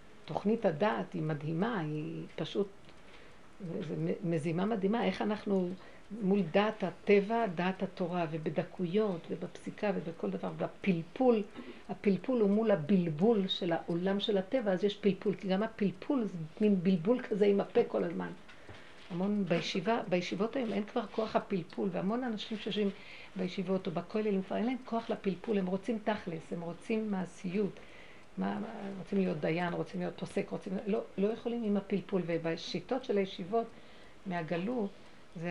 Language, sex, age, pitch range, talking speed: Hebrew, female, 60-79, 180-220 Hz, 140 wpm